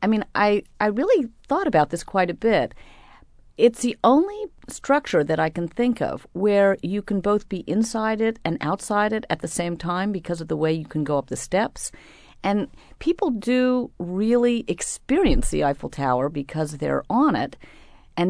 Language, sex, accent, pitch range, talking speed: English, female, American, 160-230 Hz, 185 wpm